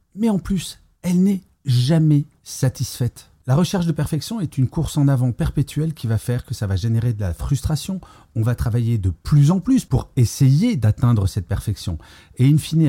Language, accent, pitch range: French, French, 105-145 Hz